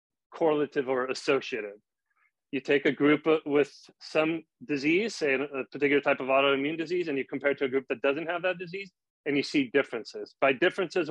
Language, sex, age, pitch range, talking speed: English, male, 30-49, 125-145 Hz, 190 wpm